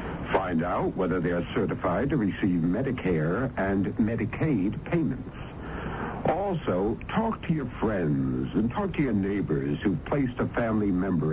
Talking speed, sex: 145 wpm, male